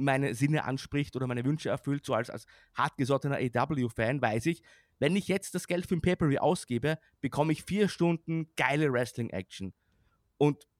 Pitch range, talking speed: 135-170 Hz, 170 wpm